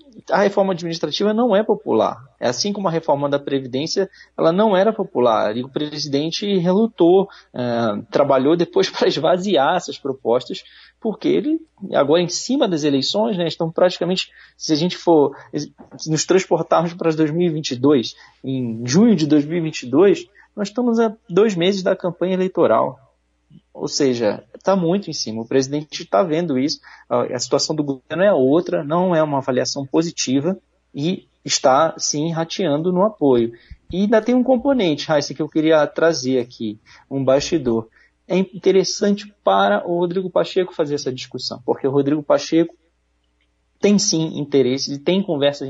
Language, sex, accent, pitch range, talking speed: Portuguese, male, Brazilian, 130-180 Hz, 155 wpm